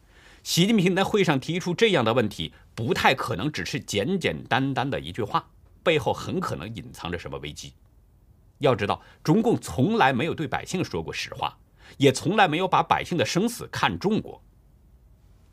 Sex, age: male, 50-69